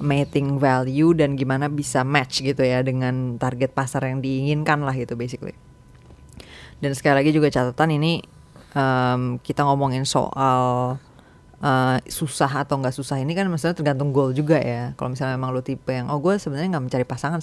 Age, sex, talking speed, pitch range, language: 20-39, female, 170 wpm, 135-165 Hz, Indonesian